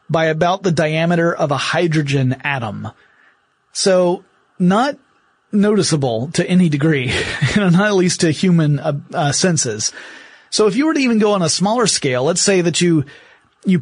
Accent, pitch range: American, 150-190 Hz